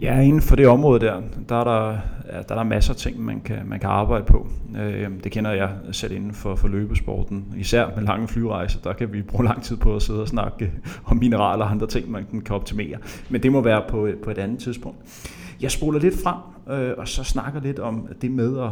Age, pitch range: 30-49, 105-125 Hz